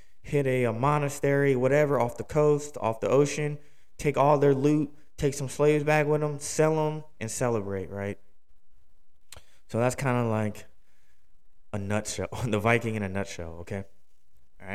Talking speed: 165 wpm